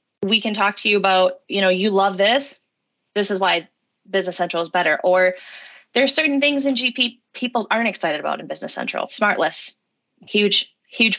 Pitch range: 185-235 Hz